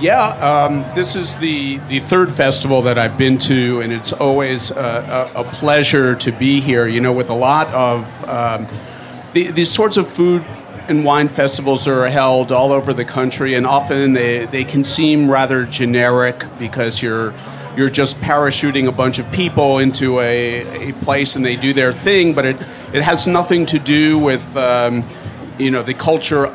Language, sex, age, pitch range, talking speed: English, male, 40-59, 120-145 Hz, 185 wpm